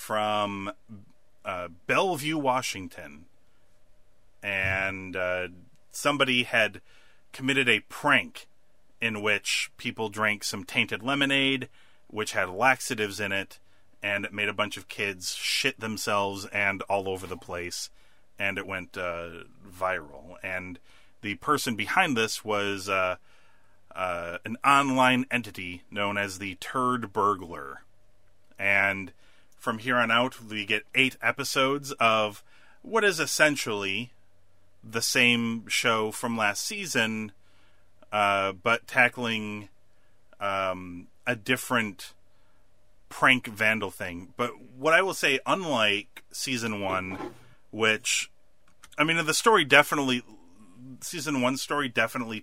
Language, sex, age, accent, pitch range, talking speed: English, male, 30-49, American, 95-125 Hz, 120 wpm